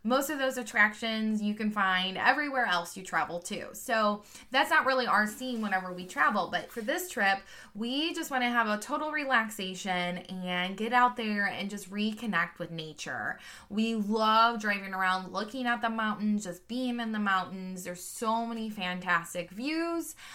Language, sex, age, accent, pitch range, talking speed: English, female, 20-39, American, 190-250 Hz, 175 wpm